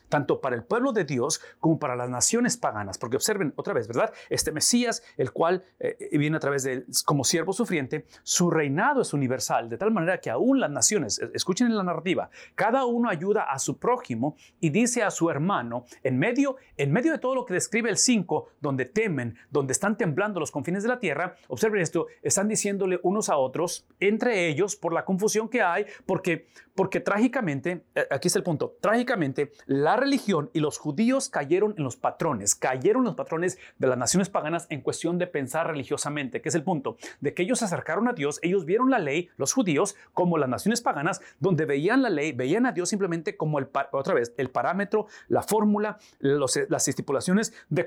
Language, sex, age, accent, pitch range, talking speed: English, male, 40-59, Mexican, 150-220 Hz, 200 wpm